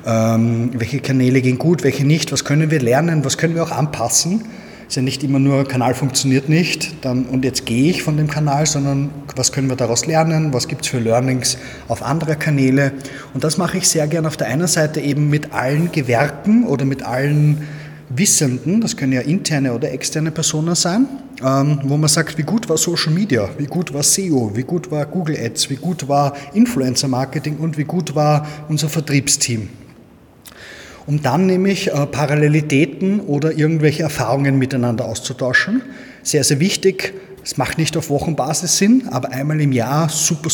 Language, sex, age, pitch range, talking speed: German, male, 30-49, 135-160 Hz, 180 wpm